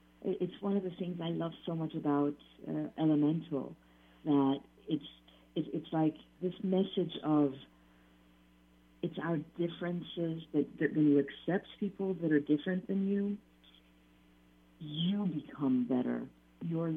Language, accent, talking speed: English, American, 130 wpm